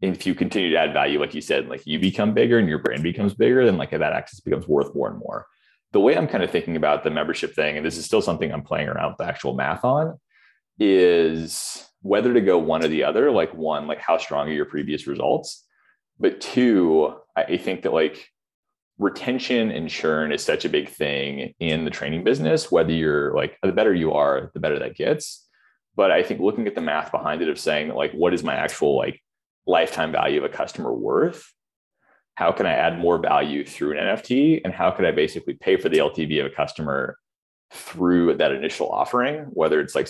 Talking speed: 215 wpm